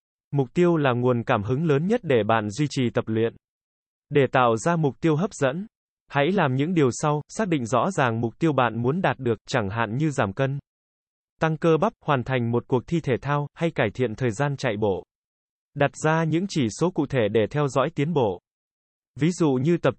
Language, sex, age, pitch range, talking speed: Vietnamese, male, 20-39, 120-155 Hz, 220 wpm